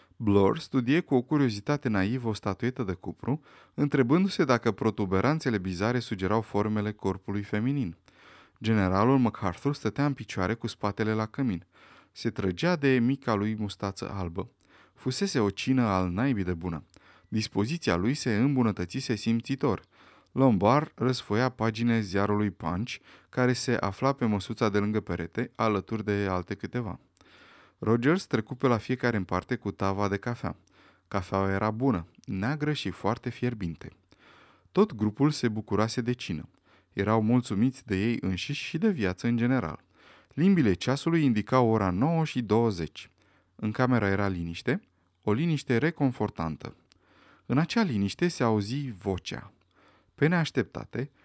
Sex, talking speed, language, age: male, 140 wpm, Romanian, 20-39